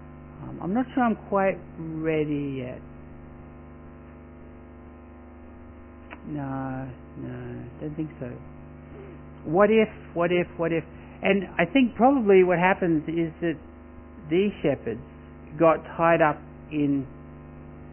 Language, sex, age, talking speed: English, male, 60-79, 110 wpm